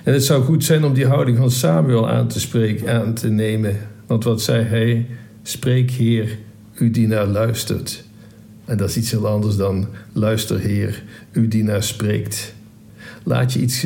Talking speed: 175 wpm